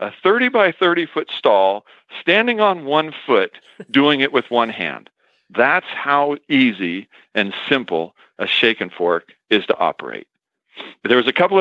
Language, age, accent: English, 50-69, American